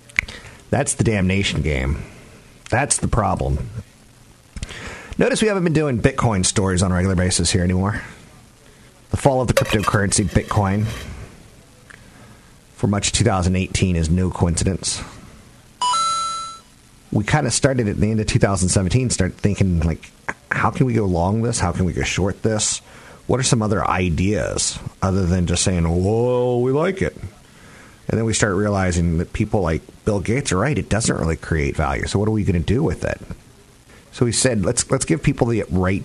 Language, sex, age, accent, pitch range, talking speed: English, male, 40-59, American, 85-110 Hz, 175 wpm